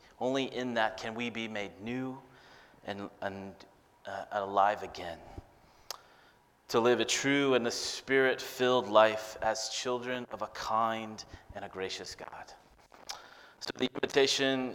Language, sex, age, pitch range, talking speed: English, male, 30-49, 100-125 Hz, 135 wpm